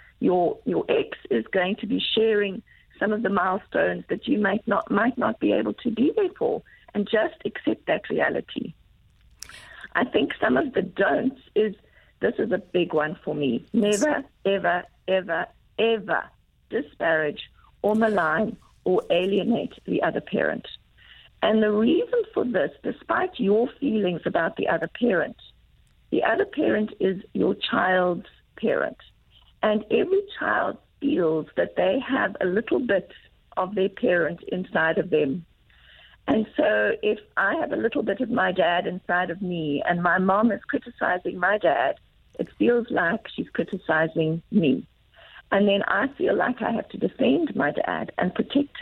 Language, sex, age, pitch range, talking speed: English, female, 50-69, 185-265 Hz, 160 wpm